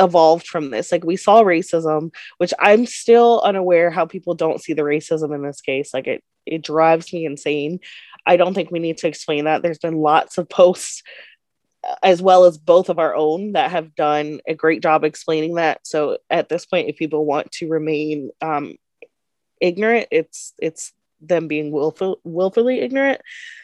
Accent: American